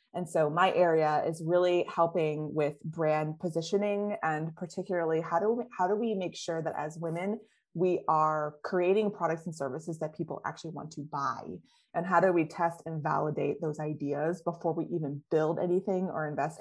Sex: female